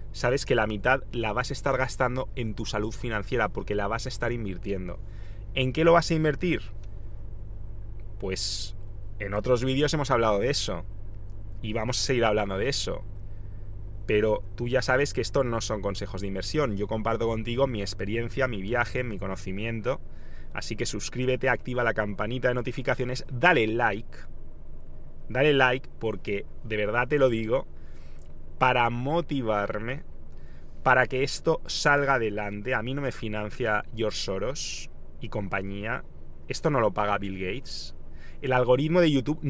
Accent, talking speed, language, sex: Spanish, 160 wpm, English, male